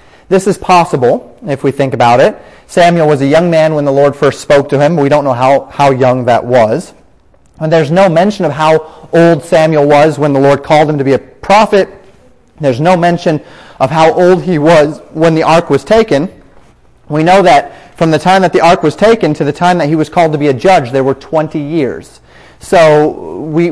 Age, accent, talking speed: 30-49, American, 220 wpm